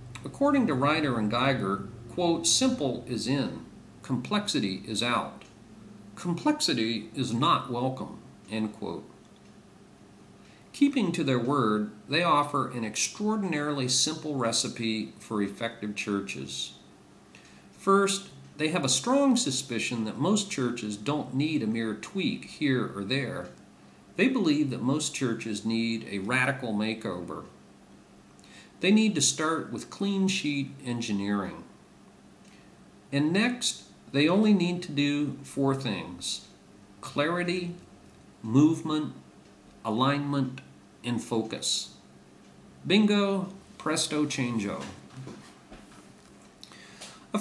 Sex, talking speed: male, 105 wpm